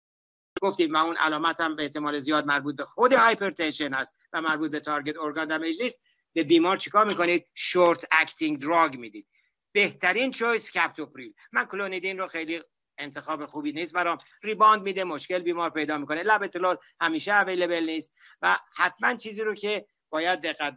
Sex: male